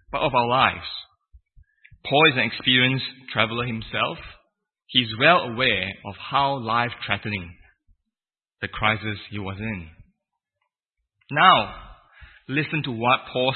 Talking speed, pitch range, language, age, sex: 120 wpm, 100-130 Hz, English, 20-39, male